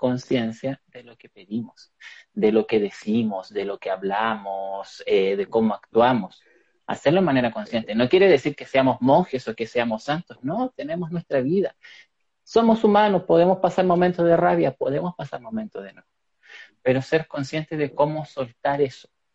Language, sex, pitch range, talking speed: Spanish, male, 130-175 Hz, 165 wpm